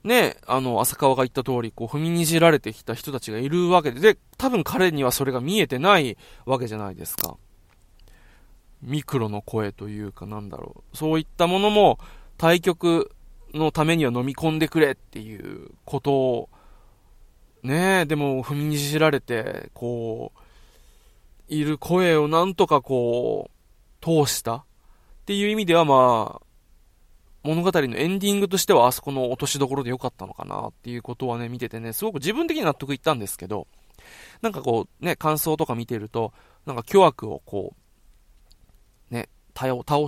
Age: 20-39